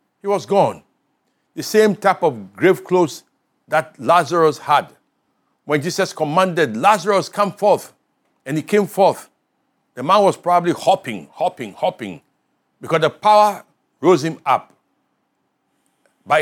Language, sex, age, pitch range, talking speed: English, male, 60-79, 135-190 Hz, 130 wpm